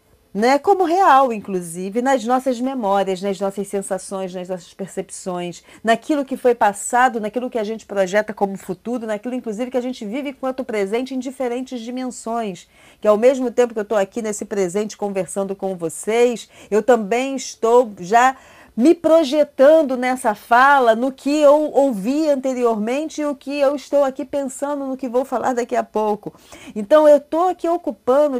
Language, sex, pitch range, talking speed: Portuguese, female, 190-260 Hz, 165 wpm